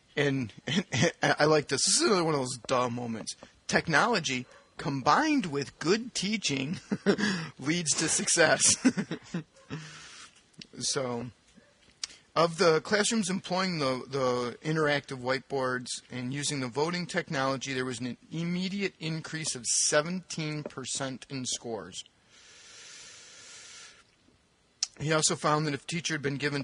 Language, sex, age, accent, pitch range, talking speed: English, male, 40-59, American, 130-170 Hz, 125 wpm